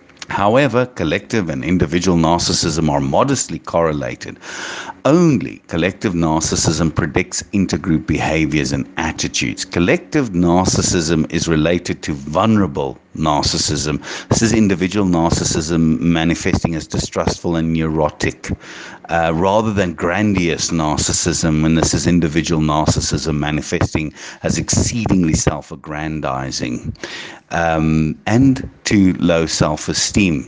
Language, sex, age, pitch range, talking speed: English, male, 50-69, 80-100 Hz, 100 wpm